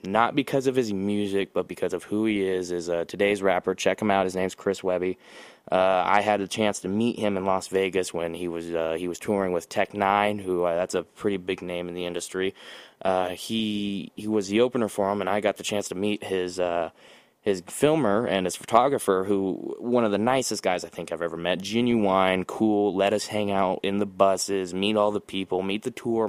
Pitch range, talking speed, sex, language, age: 95-110 Hz, 235 wpm, male, English, 20-39